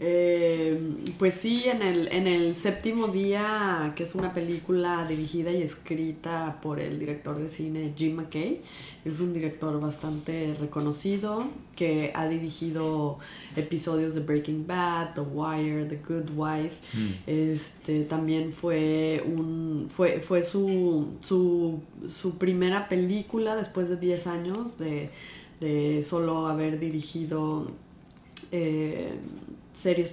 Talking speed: 125 wpm